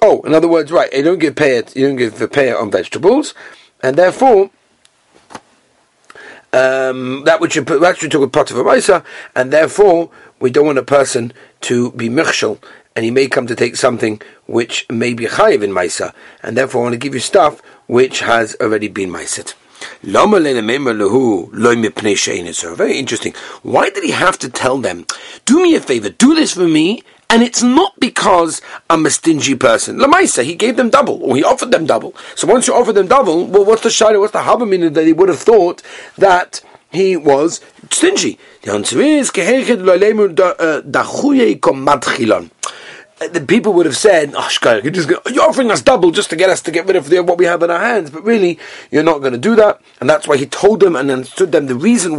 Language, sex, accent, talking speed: English, male, British, 190 wpm